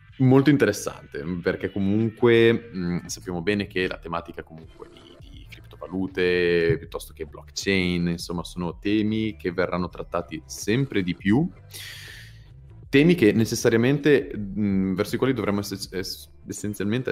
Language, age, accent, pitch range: Italian, 30-49, native, 85-105 Hz